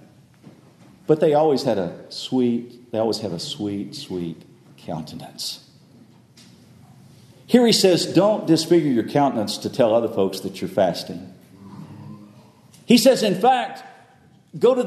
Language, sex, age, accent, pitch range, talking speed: English, male, 50-69, American, 145-205 Hz, 135 wpm